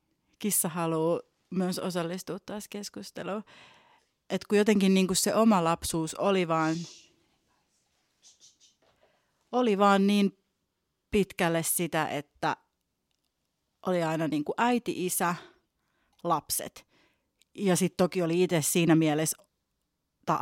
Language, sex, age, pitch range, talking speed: Finnish, female, 30-49, 160-190 Hz, 105 wpm